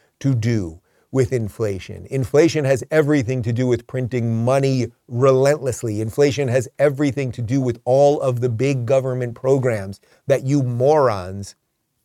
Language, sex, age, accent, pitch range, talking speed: English, male, 40-59, American, 120-150 Hz, 140 wpm